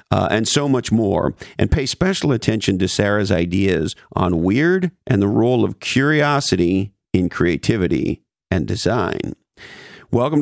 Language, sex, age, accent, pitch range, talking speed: English, male, 50-69, American, 100-130 Hz, 140 wpm